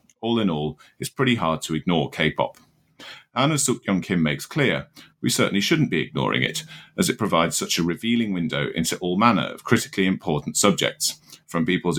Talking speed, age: 185 wpm, 40-59